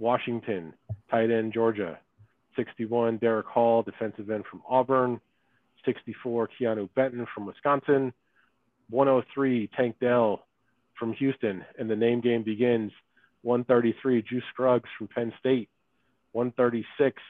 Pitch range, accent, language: 100-125 Hz, American, English